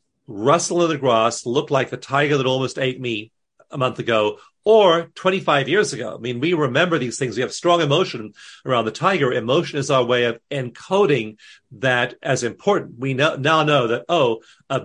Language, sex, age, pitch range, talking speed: English, male, 40-59, 125-160 Hz, 190 wpm